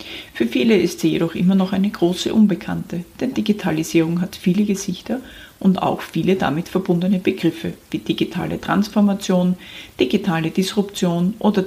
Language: German